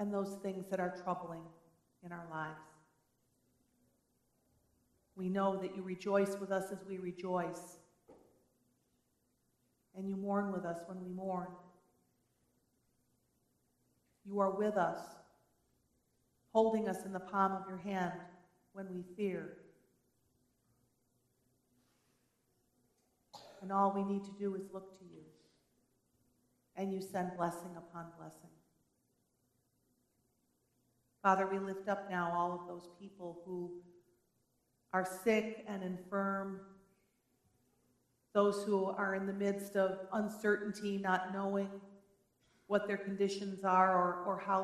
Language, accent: English, American